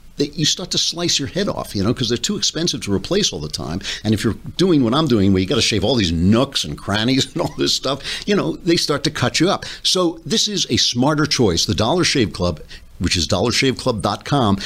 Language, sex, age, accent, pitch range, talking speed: English, male, 60-79, American, 95-130 Hz, 250 wpm